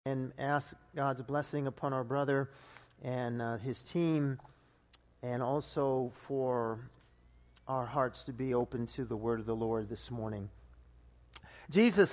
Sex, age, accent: male, 50-69, American